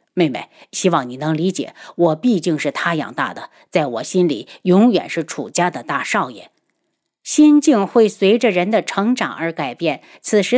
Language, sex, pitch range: Chinese, female, 175-250 Hz